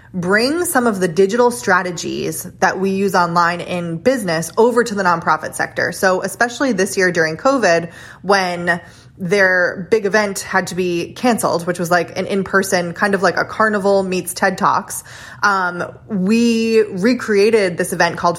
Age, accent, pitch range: 20-39, American, 175-215 Hz